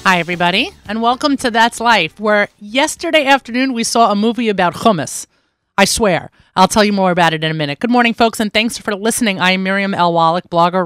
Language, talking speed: English, 220 wpm